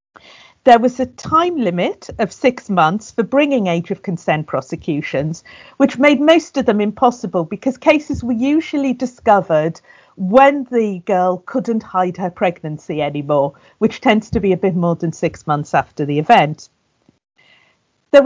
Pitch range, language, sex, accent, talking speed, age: 175-265 Hz, English, female, British, 155 wpm, 50-69